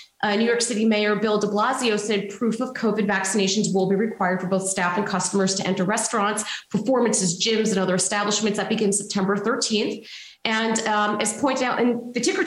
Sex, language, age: female, English, 30-49